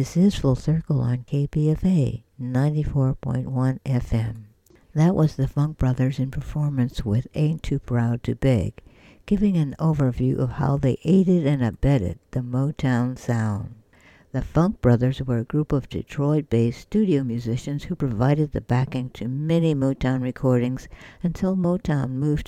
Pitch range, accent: 125-150 Hz, American